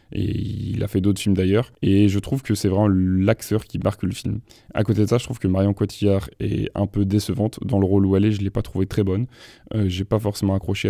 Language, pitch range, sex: French, 100-110 Hz, male